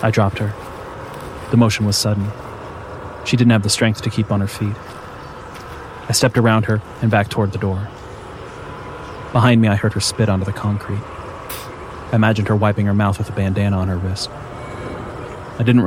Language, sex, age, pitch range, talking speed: English, male, 30-49, 100-120 Hz, 185 wpm